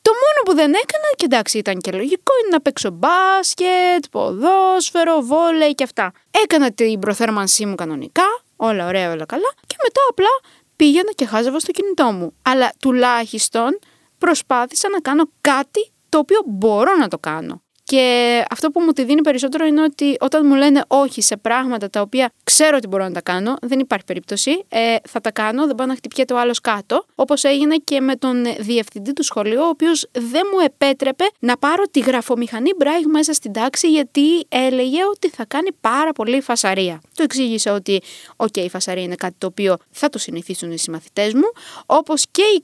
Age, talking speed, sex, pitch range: 20-39, 185 wpm, female, 220-320 Hz